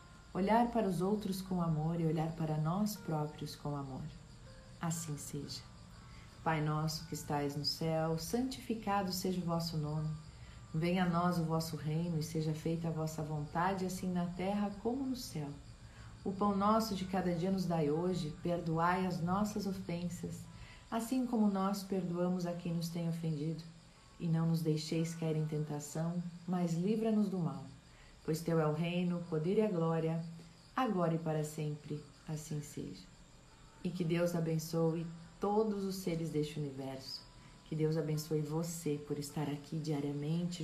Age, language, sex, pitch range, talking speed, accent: 40-59, Portuguese, female, 155-180 Hz, 160 wpm, Brazilian